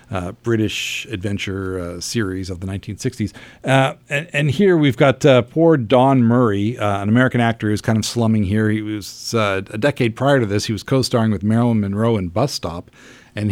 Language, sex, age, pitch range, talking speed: English, male, 50-69, 100-125 Hz, 200 wpm